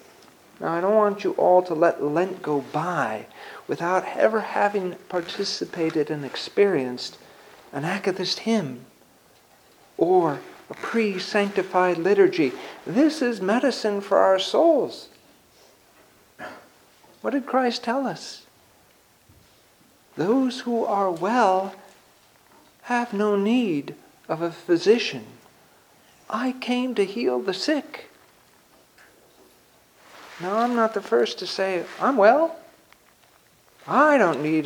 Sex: male